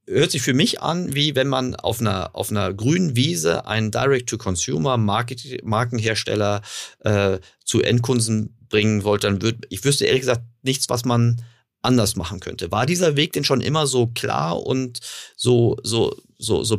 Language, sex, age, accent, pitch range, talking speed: German, male, 40-59, German, 100-125 Hz, 165 wpm